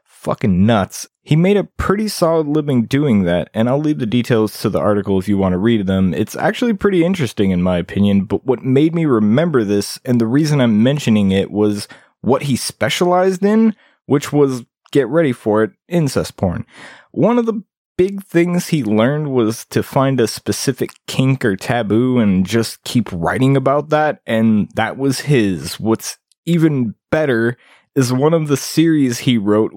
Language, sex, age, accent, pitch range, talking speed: English, male, 20-39, American, 110-145 Hz, 185 wpm